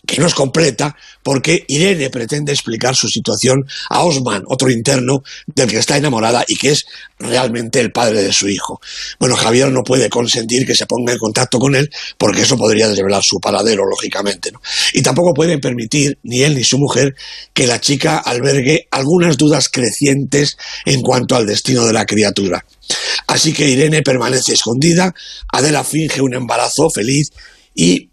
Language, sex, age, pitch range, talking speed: Spanish, male, 60-79, 120-150 Hz, 170 wpm